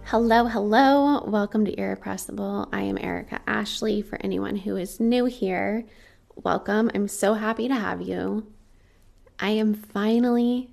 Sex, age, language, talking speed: female, 20-39, English, 140 wpm